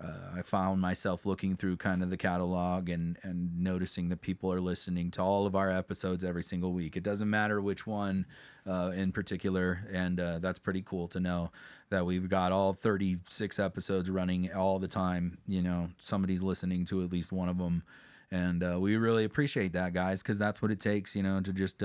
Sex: male